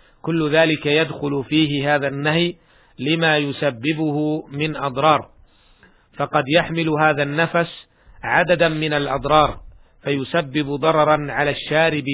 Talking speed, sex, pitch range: 105 wpm, male, 140-155 Hz